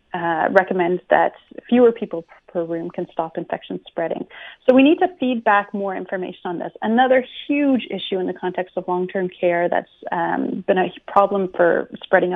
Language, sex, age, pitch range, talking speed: English, female, 30-49, 180-220 Hz, 180 wpm